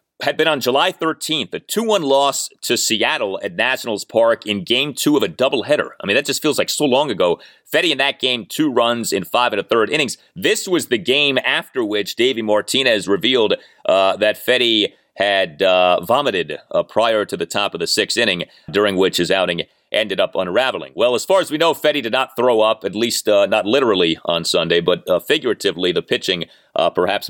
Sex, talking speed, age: male, 210 wpm, 30-49